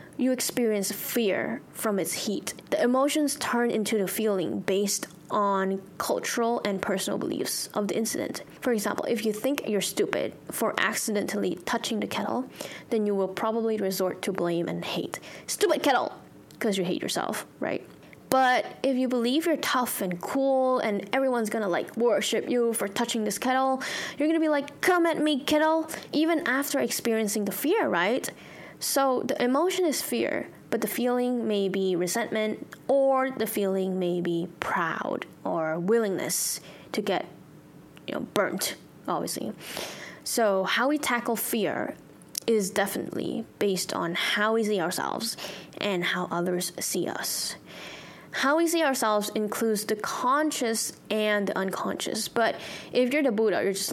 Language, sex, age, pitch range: Thai, female, 10-29, 195-260 Hz